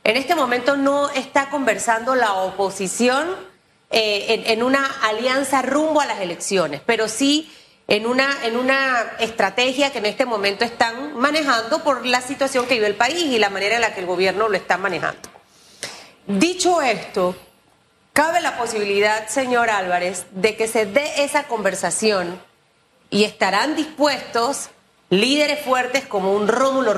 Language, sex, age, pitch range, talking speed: Spanish, female, 30-49, 205-265 Hz, 150 wpm